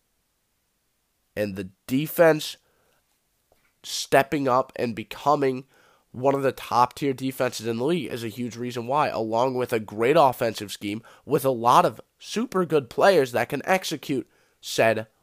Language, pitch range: English, 105-145 Hz